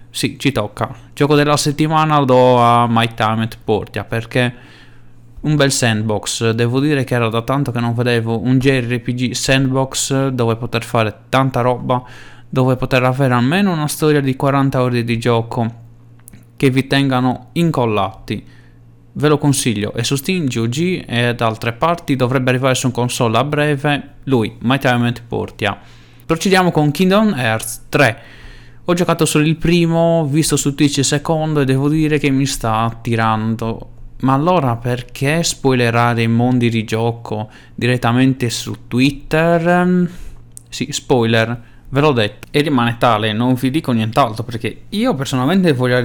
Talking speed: 155 wpm